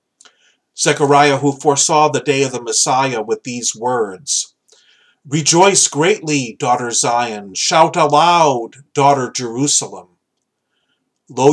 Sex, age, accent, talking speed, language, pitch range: male, 40-59, American, 105 wpm, English, 125-150 Hz